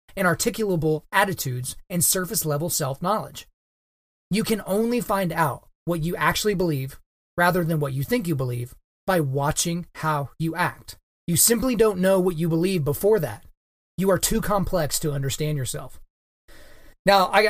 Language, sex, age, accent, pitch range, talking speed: English, male, 30-49, American, 145-185 Hz, 160 wpm